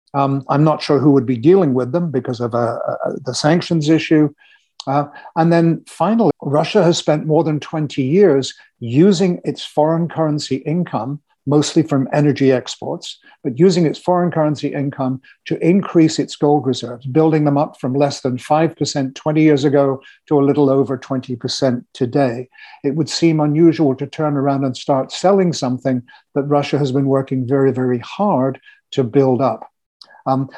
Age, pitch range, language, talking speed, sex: 60-79, 135-160 Hz, English, 170 wpm, male